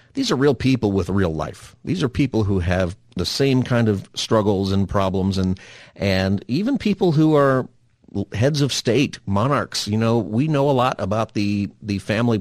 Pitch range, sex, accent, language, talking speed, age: 100-125 Hz, male, American, English, 190 wpm, 40-59